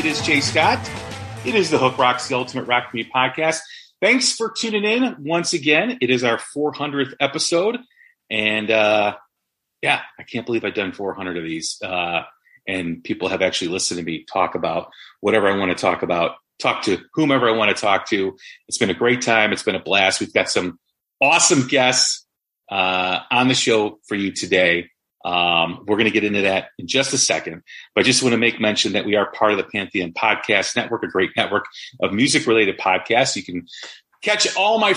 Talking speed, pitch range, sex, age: 205 wpm, 105-155 Hz, male, 30-49